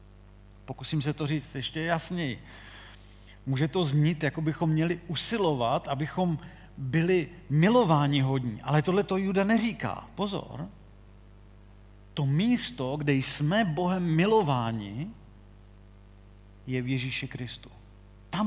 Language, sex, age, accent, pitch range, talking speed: Czech, male, 40-59, native, 110-170 Hz, 110 wpm